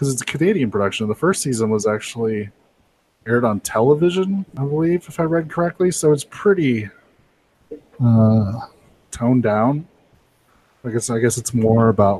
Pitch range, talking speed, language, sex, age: 110-135 Hz, 150 wpm, English, male, 20-39